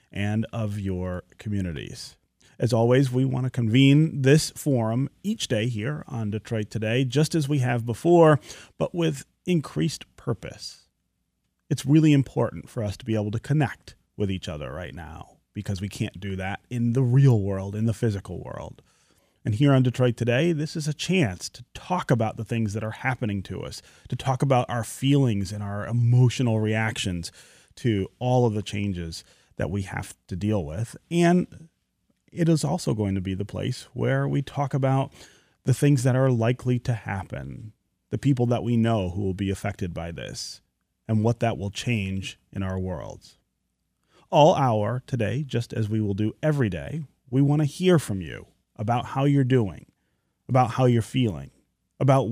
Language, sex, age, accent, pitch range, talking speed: English, male, 30-49, American, 105-135 Hz, 180 wpm